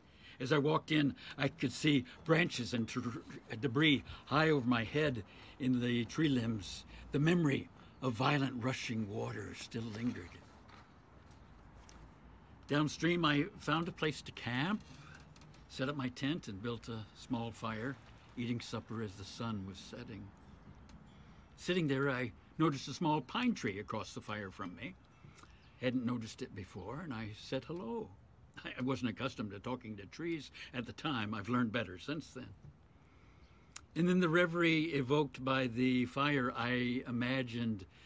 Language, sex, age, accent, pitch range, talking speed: English, male, 60-79, American, 115-150 Hz, 150 wpm